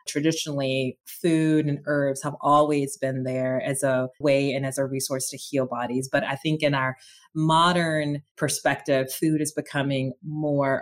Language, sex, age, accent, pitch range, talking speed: English, female, 30-49, American, 140-165 Hz, 160 wpm